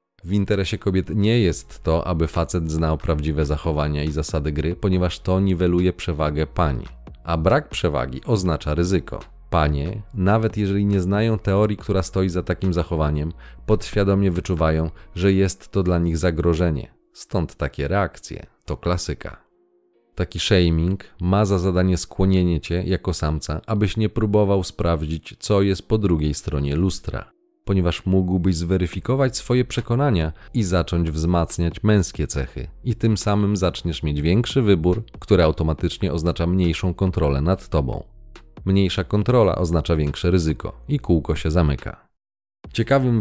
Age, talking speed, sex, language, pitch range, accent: 40-59, 140 wpm, male, Polish, 85-105 Hz, native